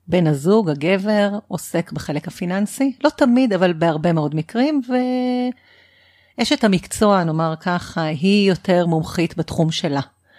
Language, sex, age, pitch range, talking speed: Hebrew, female, 40-59, 165-210 Hz, 125 wpm